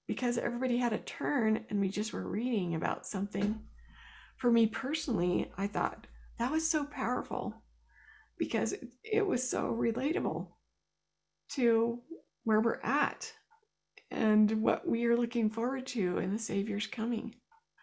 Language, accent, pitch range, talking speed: English, American, 205-240 Hz, 140 wpm